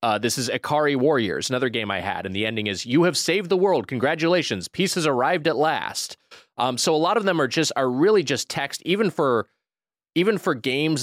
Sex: male